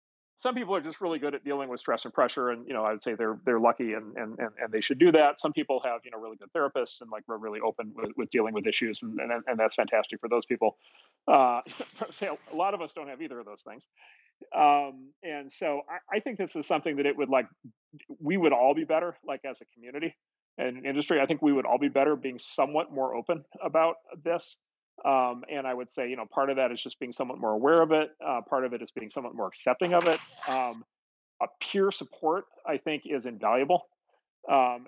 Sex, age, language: male, 40-59, English